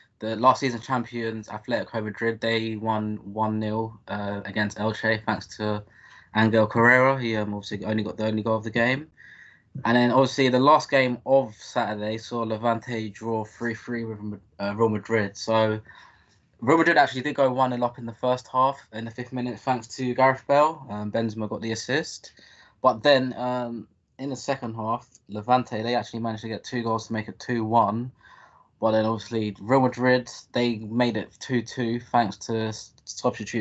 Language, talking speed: English, 175 wpm